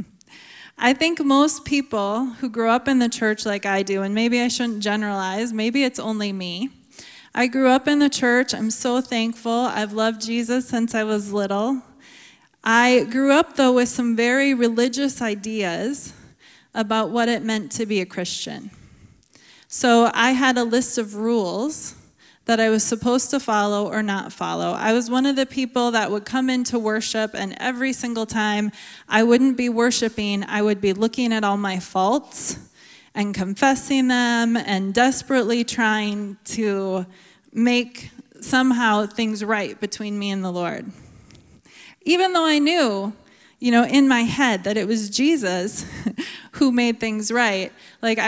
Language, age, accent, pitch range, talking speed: English, 20-39, American, 210-255 Hz, 165 wpm